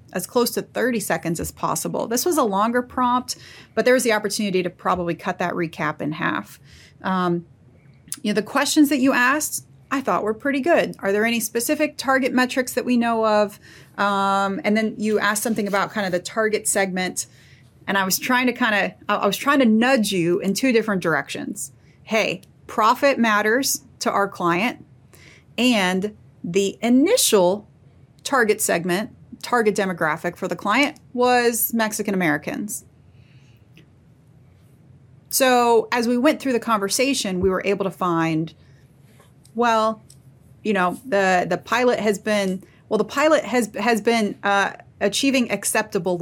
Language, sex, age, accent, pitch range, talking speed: English, female, 30-49, American, 175-240 Hz, 160 wpm